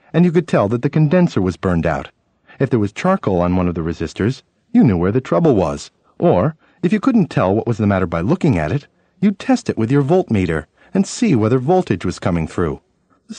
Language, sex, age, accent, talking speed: English, male, 50-69, American, 235 wpm